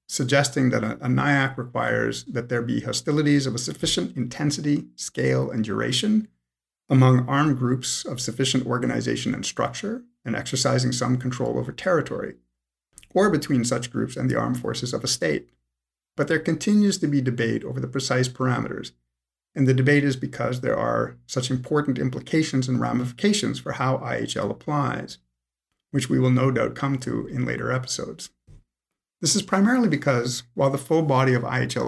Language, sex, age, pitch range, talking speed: English, male, 50-69, 105-145 Hz, 165 wpm